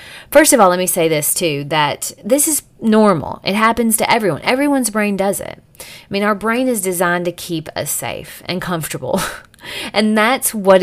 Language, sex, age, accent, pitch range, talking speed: English, female, 30-49, American, 175-230 Hz, 195 wpm